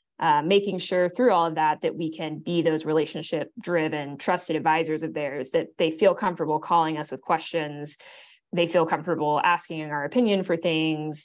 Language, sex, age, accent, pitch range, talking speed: English, female, 20-39, American, 155-180 Hz, 175 wpm